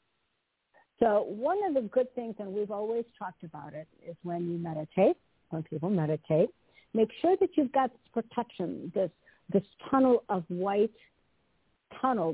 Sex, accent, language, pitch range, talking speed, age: female, American, English, 170-215 Hz, 155 wpm, 60-79